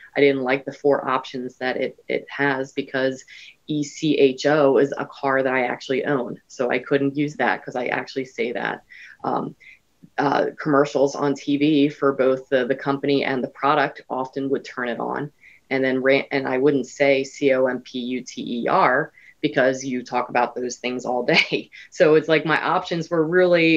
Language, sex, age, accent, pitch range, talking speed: English, female, 20-39, American, 130-145 Hz, 175 wpm